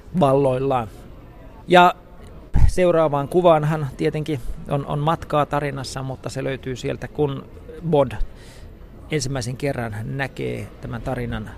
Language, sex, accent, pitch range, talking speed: Finnish, male, native, 115-140 Hz, 100 wpm